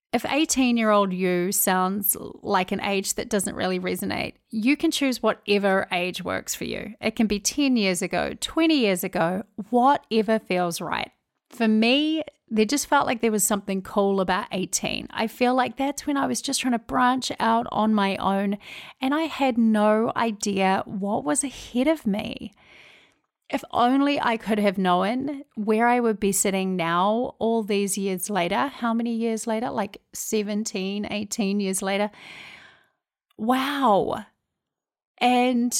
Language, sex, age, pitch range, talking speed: English, female, 30-49, 195-250 Hz, 160 wpm